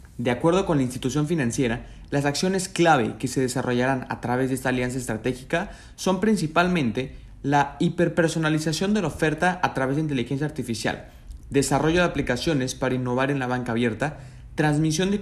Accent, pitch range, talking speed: Mexican, 125-165 Hz, 160 wpm